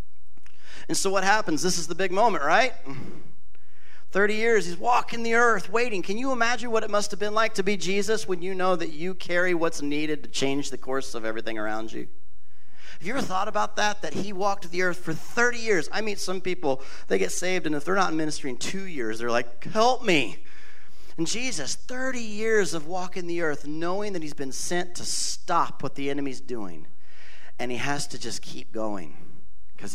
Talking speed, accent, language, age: 210 wpm, American, English, 40-59